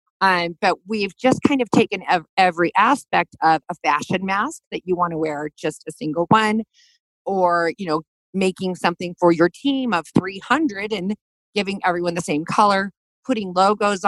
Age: 40-59